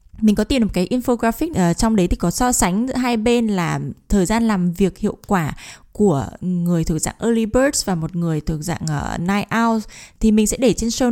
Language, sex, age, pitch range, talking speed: Vietnamese, female, 10-29, 185-245 Hz, 235 wpm